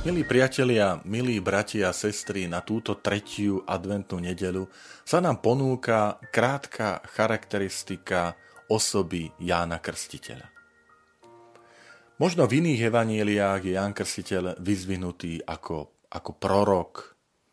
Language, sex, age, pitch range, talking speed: Slovak, male, 40-59, 90-110 Hz, 105 wpm